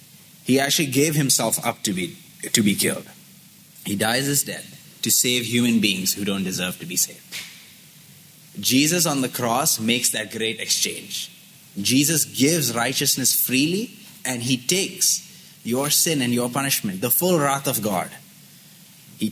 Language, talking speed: English, 155 wpm